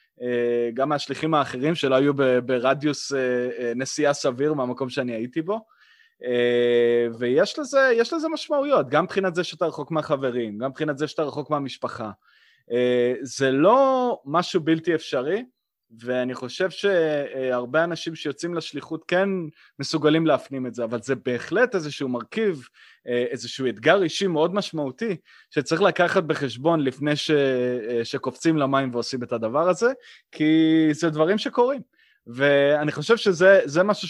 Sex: male